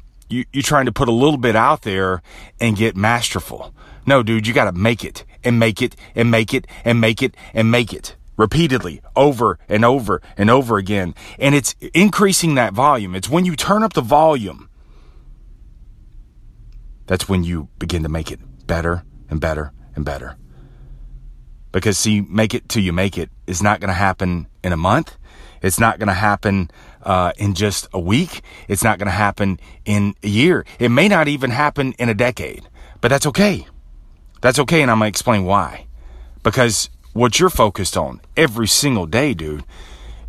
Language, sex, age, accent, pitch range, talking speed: English, male, 30-49, American, 85-125 Hz, 185 wpm